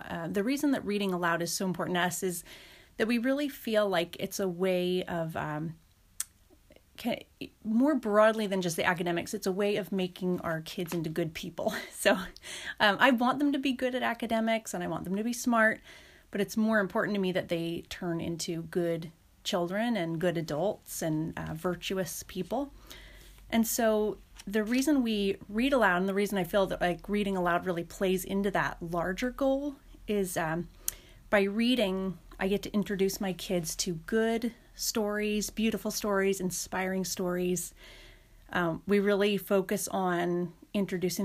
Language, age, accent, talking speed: English, 30-49, American, 175 wpm